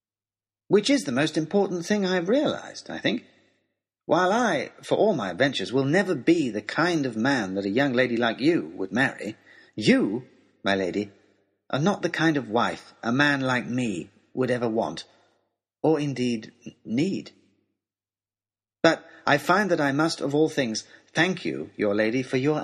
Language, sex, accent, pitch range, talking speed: English, male, British, 110-165 Hz, 175 wpm